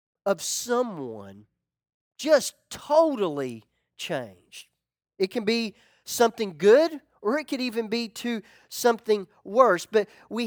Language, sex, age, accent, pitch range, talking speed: English, male, 40-59, American, 175-255 Hz, 115 wpm